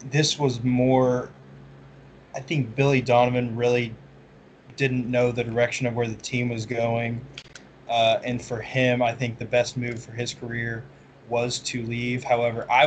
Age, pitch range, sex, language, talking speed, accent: 20-39, 110-125 Hz, male, English, 165 wpm, American